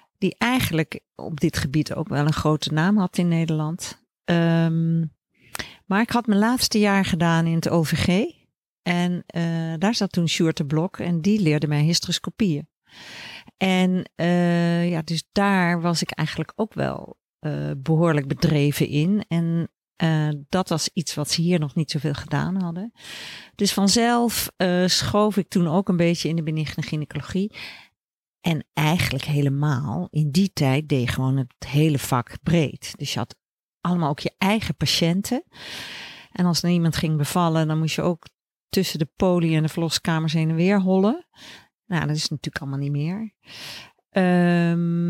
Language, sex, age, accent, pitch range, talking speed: Dutch, female, 50-69, Dutch, 155-185 Hz, 170 wpm